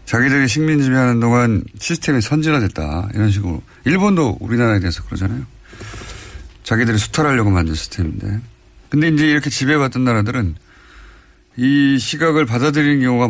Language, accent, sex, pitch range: Korean, native, male, 95-130 Hz